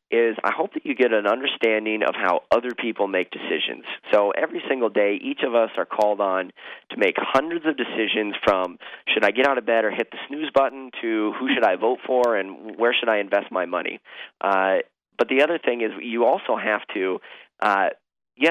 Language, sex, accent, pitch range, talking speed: English, male, American, 100-125 Hz, 215 wpm